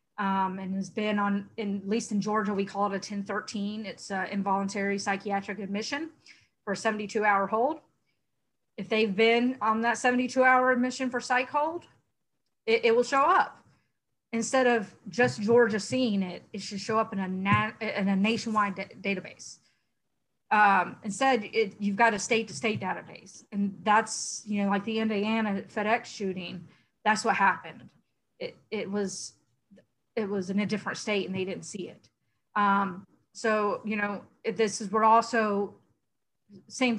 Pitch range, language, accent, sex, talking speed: 200-230 Hz, English, American, female, 165 wpm